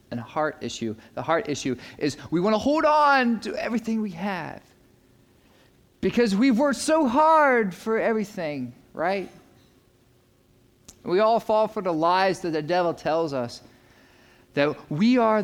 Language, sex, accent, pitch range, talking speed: English, male, American, 135-205 Hz, 150 wpm